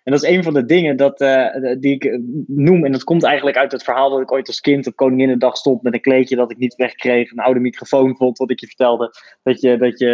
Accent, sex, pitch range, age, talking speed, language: Dutch, male, 130-170 Hz, 20-39, 280 wpm, Dutch